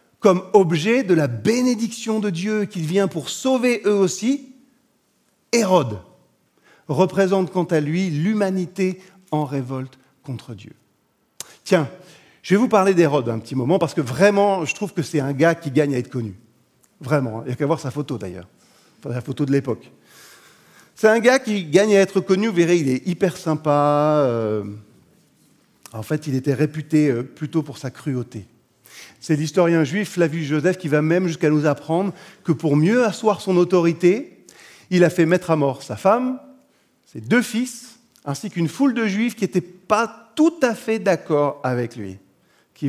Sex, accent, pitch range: male, French, 140-200 Hz